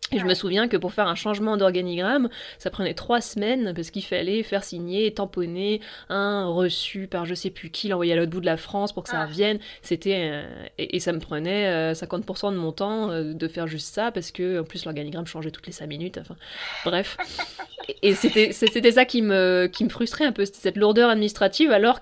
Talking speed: 215 wpm